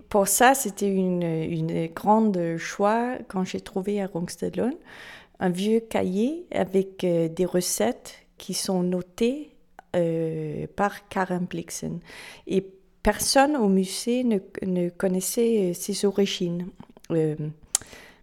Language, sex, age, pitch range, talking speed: French, female, 30-49, 175-215 Hz, 120 wpm